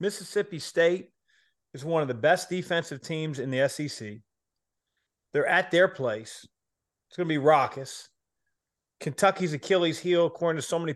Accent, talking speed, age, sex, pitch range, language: American, 155 wpm, 40-59, male, 130-155 Hz, English